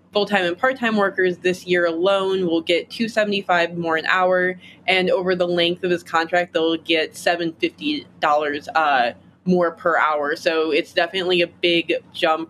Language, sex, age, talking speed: English, female, 20-39, 160 wpm